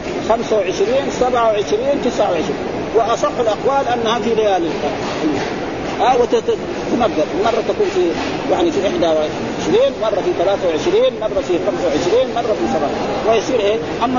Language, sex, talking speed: Arabic, male, 110 wpm